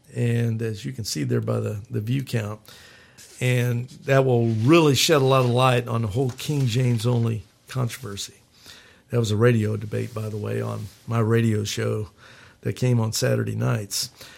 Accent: American